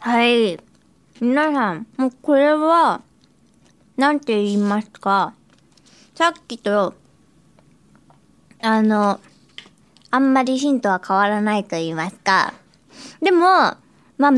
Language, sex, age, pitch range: Japanese, male, 20-39, 225-330 Hz